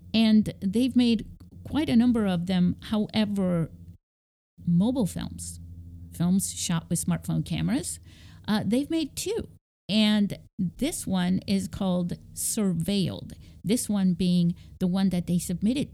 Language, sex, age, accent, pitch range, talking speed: English, female, 50-69, American, 170-210 Hz, 130 wpm